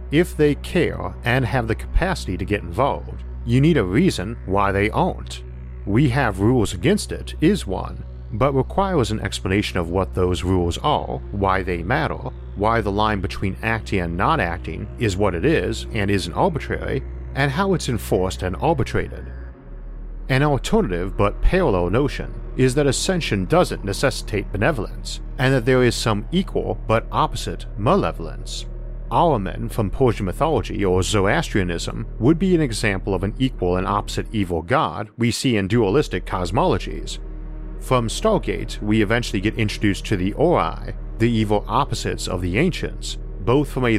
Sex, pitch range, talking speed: male, 90-125 Hz, 160 wpm